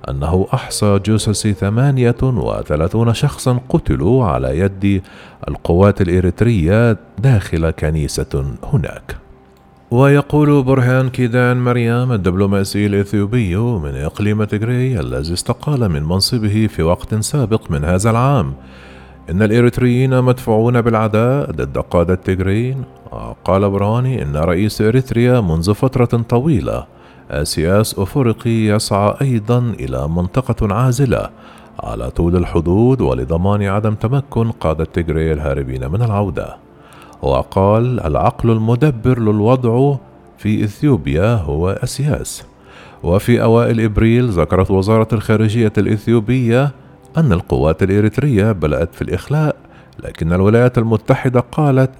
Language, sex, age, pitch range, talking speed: Arabic, male, 40-59, 90-125 Hz, 105 wpm